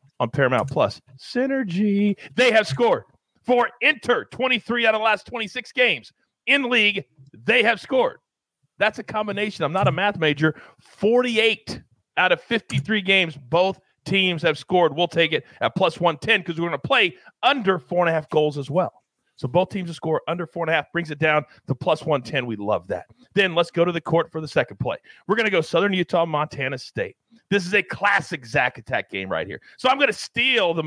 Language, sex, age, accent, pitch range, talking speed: English, male, 40-59, American, 145-210 Hz, 200 wpm